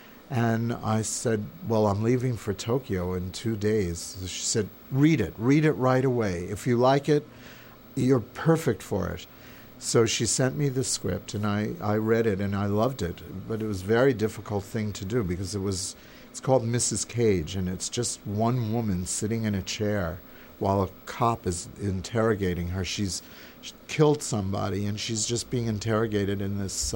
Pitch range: 100-120 Hz